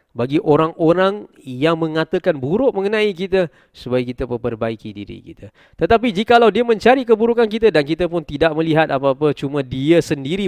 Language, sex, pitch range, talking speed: Malay, male, 120-170 Hz, 155 wpm